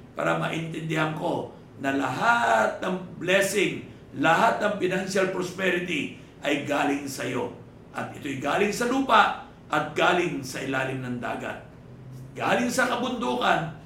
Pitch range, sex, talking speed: 140-220 Hz, male, 125 wpm